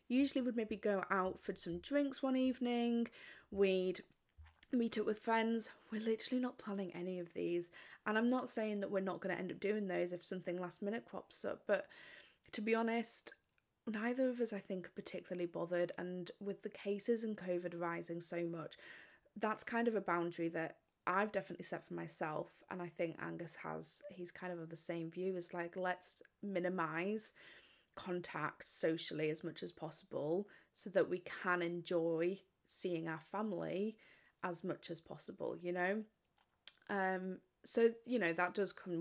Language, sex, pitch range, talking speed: English, female, 175-220 Hz, 180 wpm